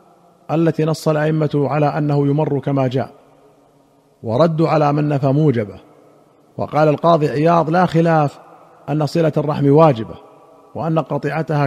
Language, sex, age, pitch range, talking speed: Arabic, male, 50-69, 140-165 Hz, 125 wpm